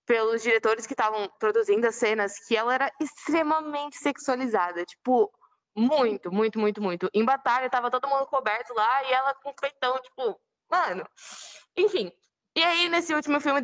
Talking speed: 165 wpm